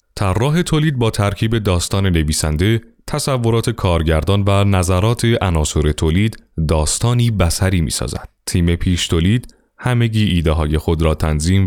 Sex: male